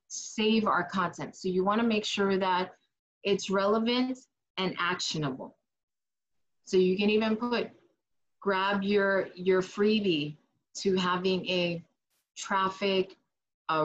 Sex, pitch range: female, 180-220 Hz